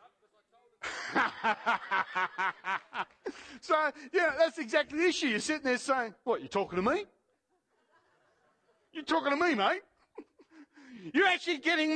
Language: English